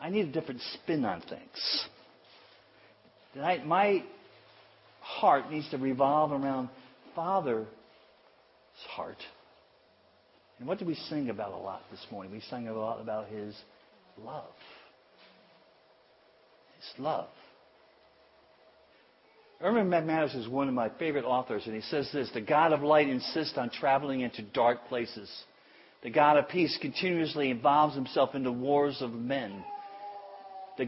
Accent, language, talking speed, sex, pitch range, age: American, English, 135 wpm, male, 120-155 Hz, 50-69